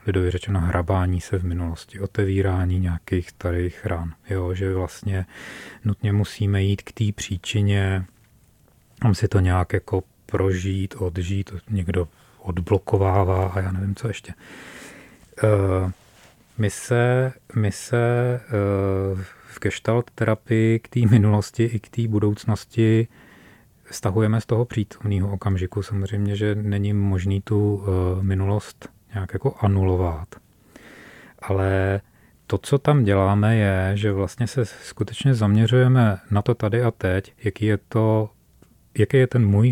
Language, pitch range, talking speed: Czech, 95-115 Hz, 125 wpm